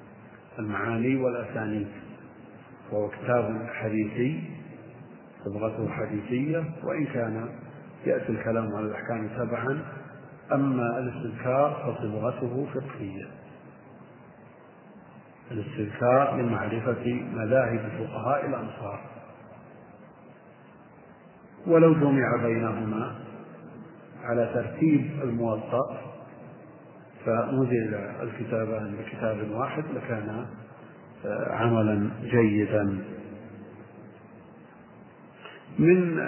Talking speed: 60 wpm